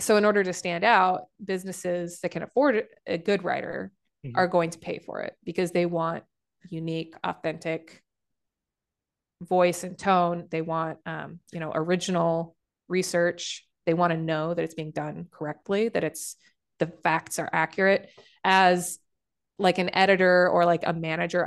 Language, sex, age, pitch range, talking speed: English, female, 20-39, 165-185 Hz, 160 wpm